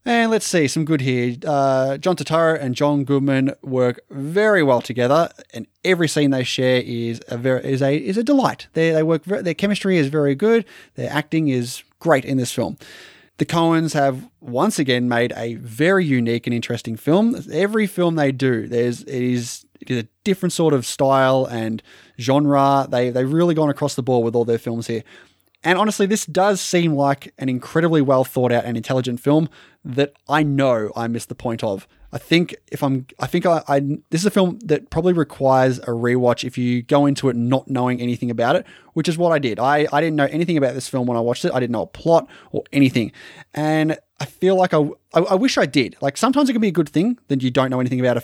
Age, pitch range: 20-39, 125-160 Hz